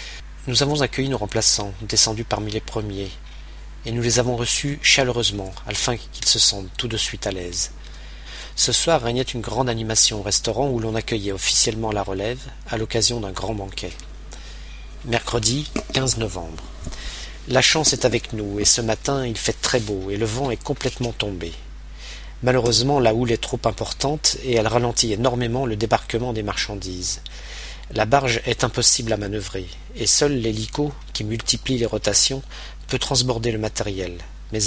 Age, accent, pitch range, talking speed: 40-59, French, 100-125 Hz, 165 wpm